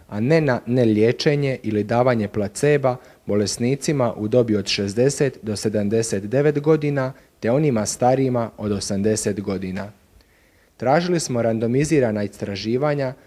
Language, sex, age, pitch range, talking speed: Croatian, male, 40-59, 105-135 Hz, 115 wpm